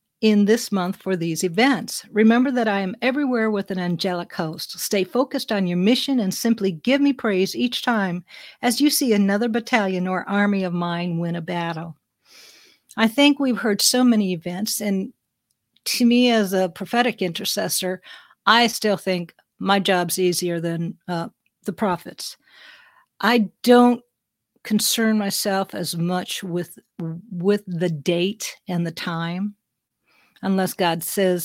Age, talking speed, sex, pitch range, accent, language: 50-69, 150 wpm, female, 180-230 Hz, American, English